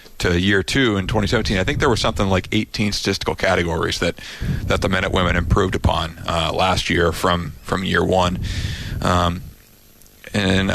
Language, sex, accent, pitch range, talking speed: English, male, American, 90-110 Hz, 175 wpm